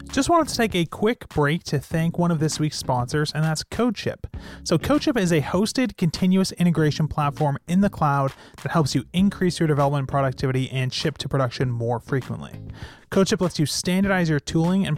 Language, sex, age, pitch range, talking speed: English, male, 30-49, 135-170 Hz, 190 wpm